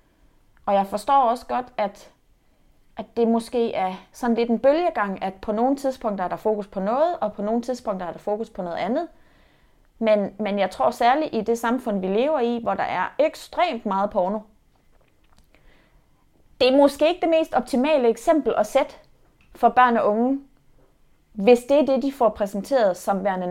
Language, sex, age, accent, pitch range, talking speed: Danish, female, 30-49, native, 185-240 Hz, 185 wpm